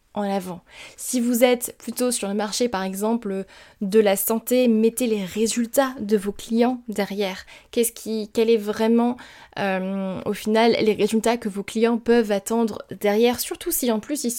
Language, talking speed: French, 175 wpm